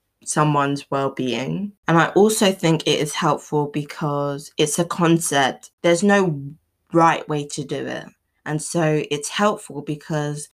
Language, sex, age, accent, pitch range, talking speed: English, female, 20-39, British, 145-175 Hz, 140 wpm